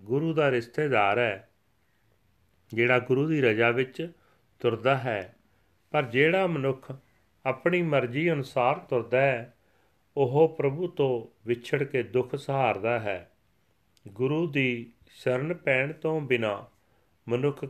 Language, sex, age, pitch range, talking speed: Punjabi, male, 40-59, 110-140 Hz, 115 wpm